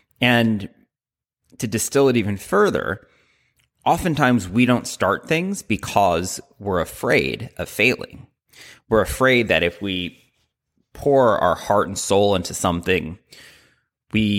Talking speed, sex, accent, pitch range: 120 wpm, male, American, 95-125 Hz